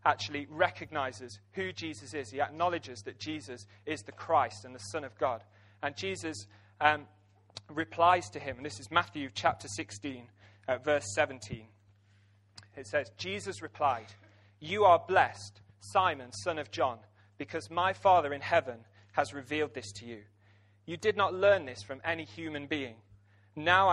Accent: British